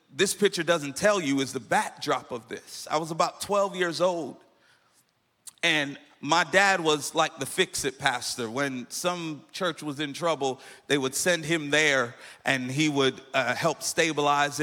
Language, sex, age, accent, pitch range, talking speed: English, male, 40-59, American, 145-190 Hz, 170 wpm